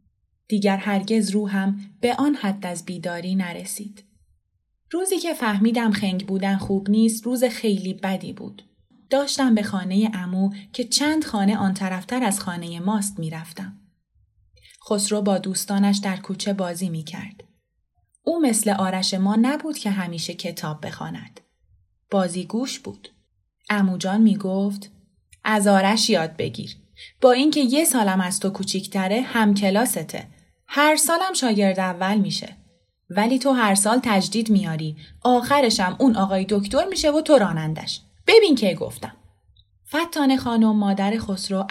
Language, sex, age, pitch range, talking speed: Persian, female, 20-39, 185-250 Hz, 130 wpm